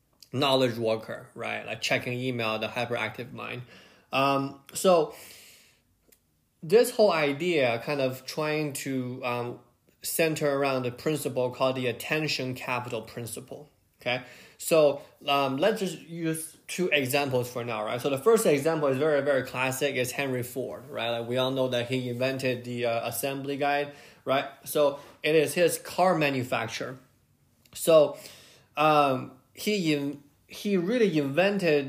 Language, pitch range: English, 125-145 Hz